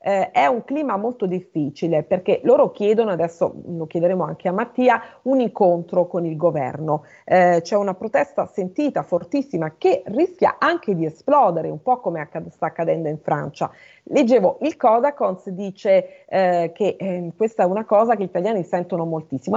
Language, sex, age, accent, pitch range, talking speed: Italian, female, 40-59, native, 170-235 Hz, 170 wpm